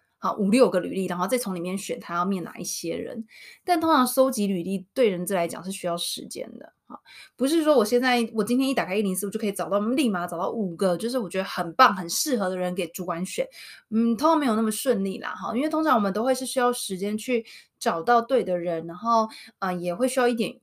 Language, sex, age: Chinese, female, 20-39